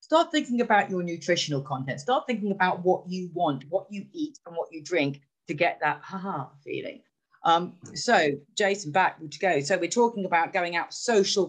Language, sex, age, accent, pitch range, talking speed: English, female, 40-59, British, 155-245 Hz, 195 wpm